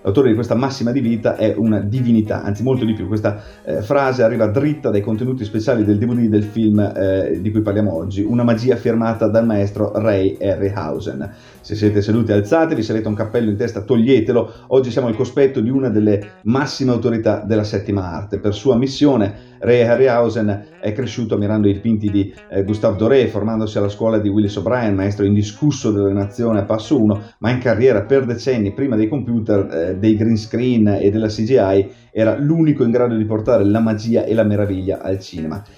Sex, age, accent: male, 30-49, native